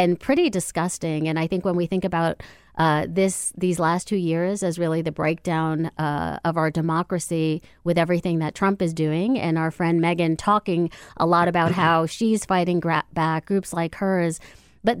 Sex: female